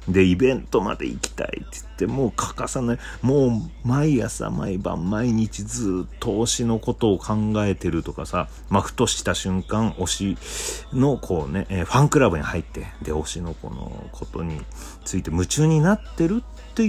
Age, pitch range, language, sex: 40-59, 75-115 Hz, Japanese, male